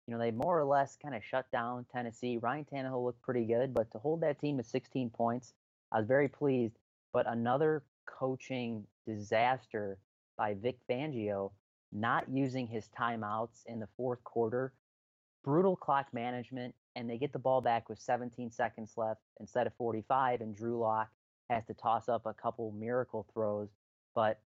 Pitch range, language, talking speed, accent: 110-125 Hz, English, 175 wpm, American